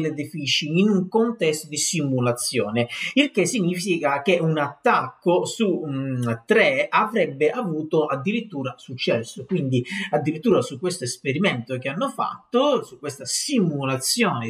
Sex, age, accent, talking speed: male, 40-59, native, 125 wpm